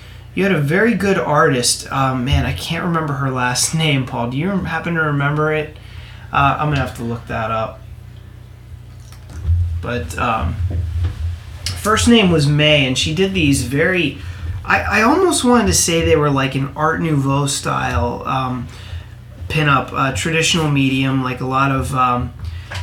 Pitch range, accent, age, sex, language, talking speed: 100-145 Hz, American, 30-49, male, English, 165 wpm